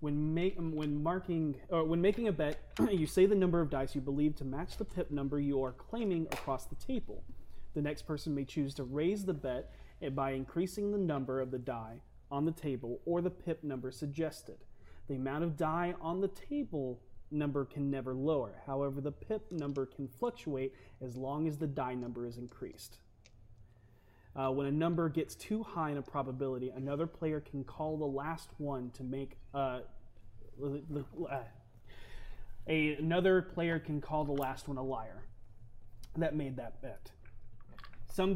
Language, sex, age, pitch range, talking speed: English, male, 30-49, 130-165 Hz, 170 wpm